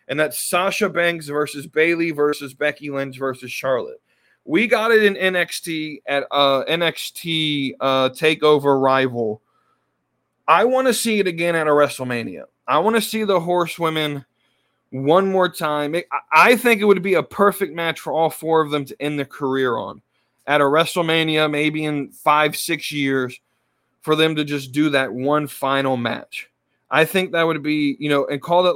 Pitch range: 135-170 Hz